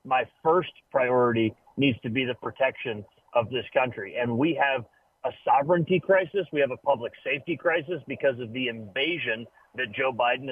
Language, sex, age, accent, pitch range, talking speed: English, male, 40-59, American, 125-155 Hz, 170 wpm